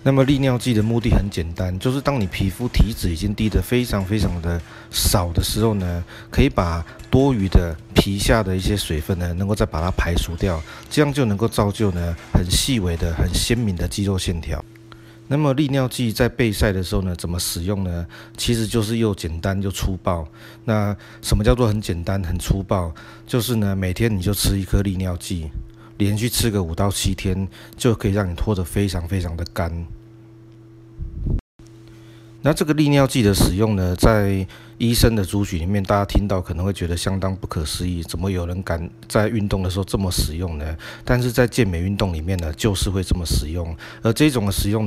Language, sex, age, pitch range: Chinese, male, 30-49, 90-110 Hz